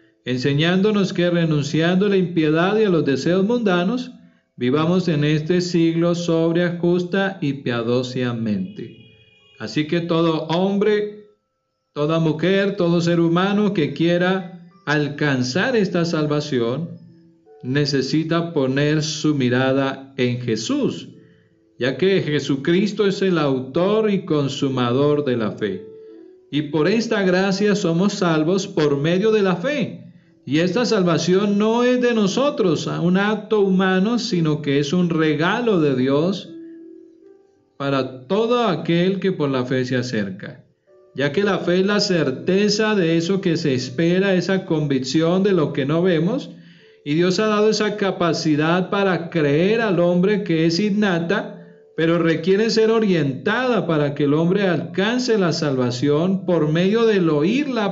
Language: Spanish